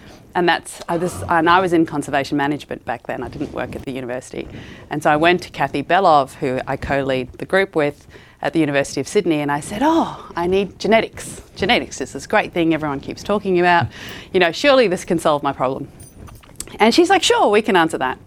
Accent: Australian